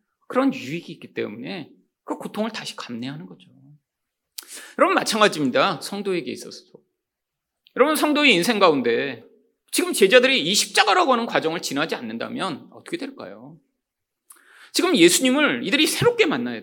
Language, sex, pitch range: Korean, male, 200-335 Hz